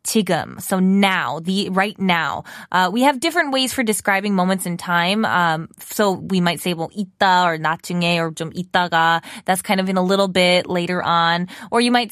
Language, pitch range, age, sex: Korean, 180-255 Hz, 20-39, female